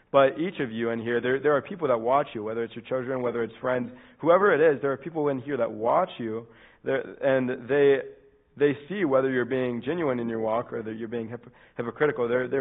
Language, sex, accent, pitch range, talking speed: English, male, American, 120-140 Hz, 235 wpm